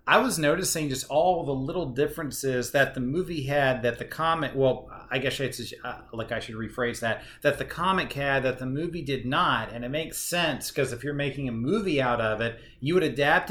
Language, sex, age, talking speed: English, male, 30-49, 220 wpm